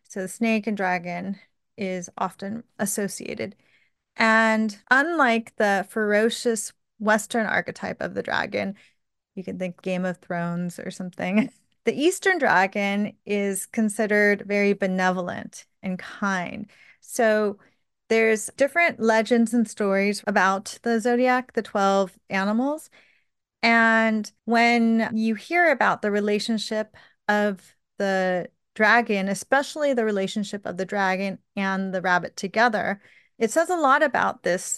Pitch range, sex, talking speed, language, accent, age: 195-230 Hz, female, 125 wpm, English, American, 30-49